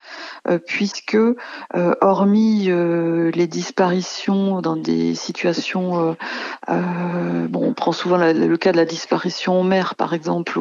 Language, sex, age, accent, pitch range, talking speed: French, female, 50-69, French, 165-195 Hz, 115 wpm